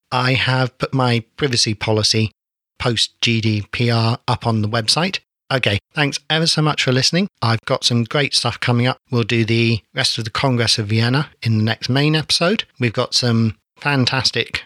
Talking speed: 175 wpm